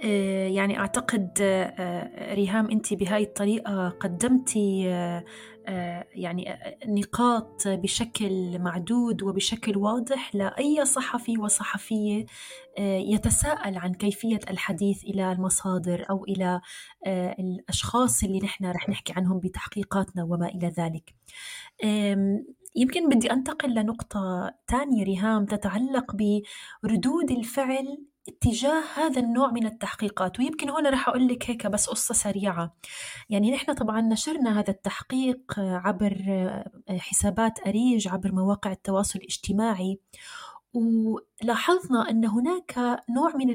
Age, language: 20-39, Arabic